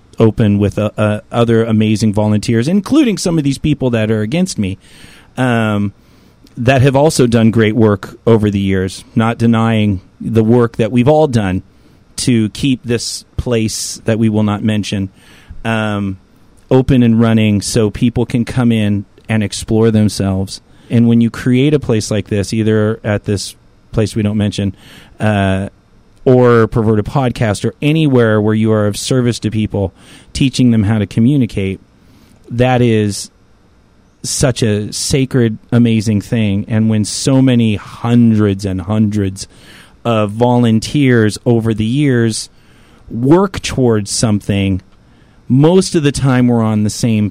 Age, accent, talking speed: 30-49, American, 150 wpm